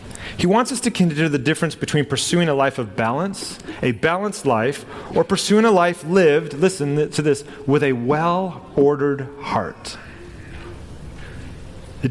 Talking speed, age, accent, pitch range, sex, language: 145 wpm, 40-59, American, 110-160 Hz, male, English